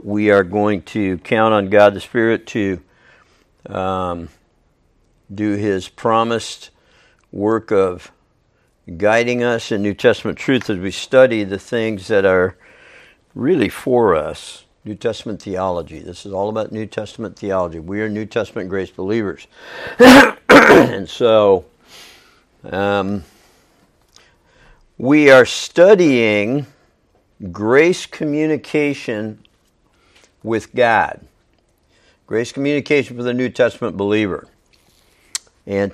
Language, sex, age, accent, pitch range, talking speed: English, male, 60-79, American, 100-130 Hz, 110 wpm